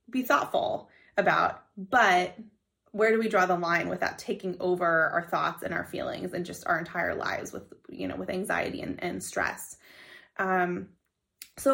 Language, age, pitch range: English, 20-39, 185-250 Hz